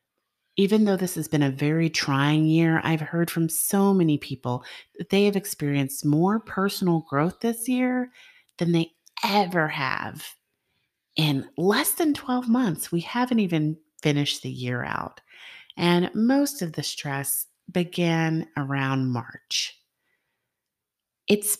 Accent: American